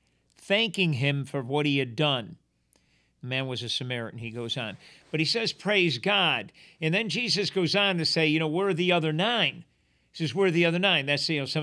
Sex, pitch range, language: male, 155-205 Hz, English